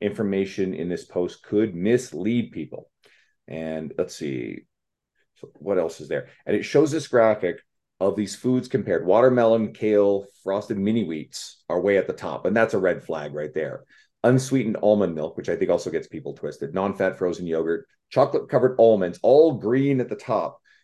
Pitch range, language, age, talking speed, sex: 95-125 Hz, English, 40-59, 180 wpm, male